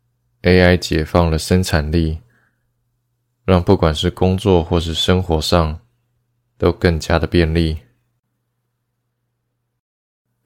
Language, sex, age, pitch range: Chinese, male, 20-39, 85-120 Hz